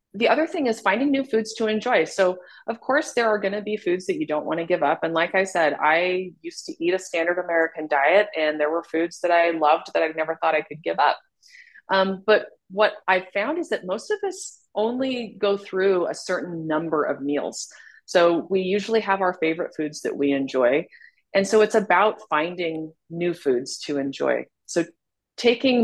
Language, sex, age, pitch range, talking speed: English, female, 30-49, 155-210 Hz, 210 wpm